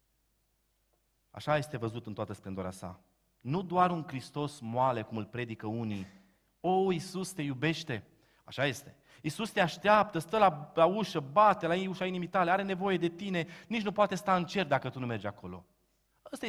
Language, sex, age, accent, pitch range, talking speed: Romanian, male, 30-49, native, 145-195 Hz, 180 wpm